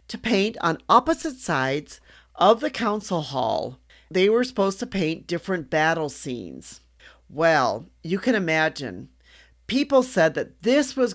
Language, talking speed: English, 140 wpm